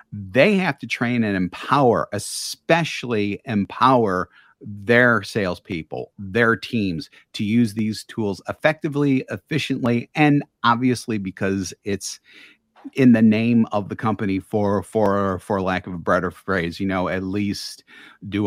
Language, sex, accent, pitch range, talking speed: English, male, American, 100-120 Hz, 135 wpm